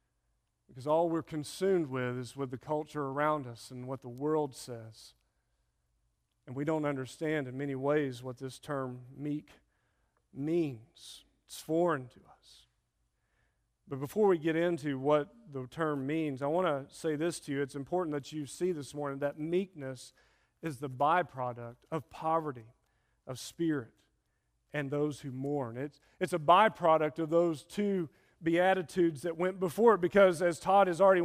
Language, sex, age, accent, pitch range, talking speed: English, male, 40-59, American, 145-230 Hz, 165 wpm